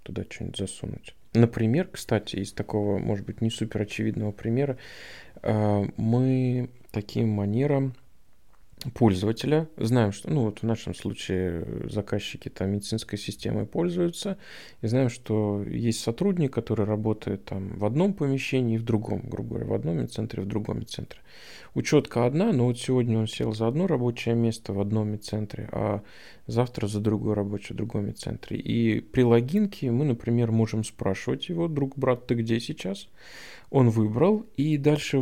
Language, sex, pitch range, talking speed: Russian, male, 105-125 Hz, 155 wpm